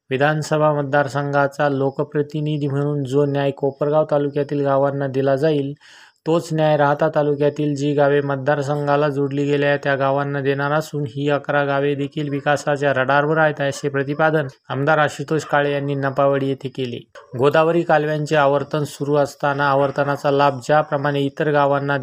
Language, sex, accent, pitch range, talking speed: Marathi, male, native, 140-150 Hz, 140 wpm